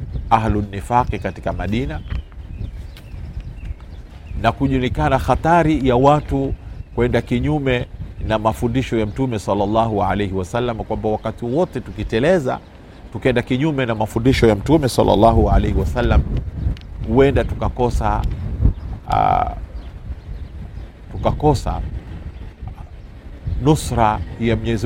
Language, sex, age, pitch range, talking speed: Swahili, male, 50-69, 90-120 Hz, 90 wpm